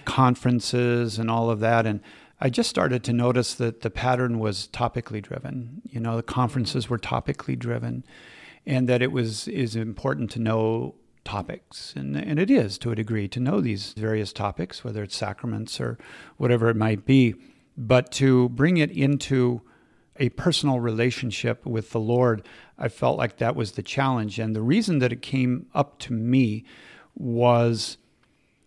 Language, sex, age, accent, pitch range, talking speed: English, male, 50-69, American, 115-135 Hz, 170 wpm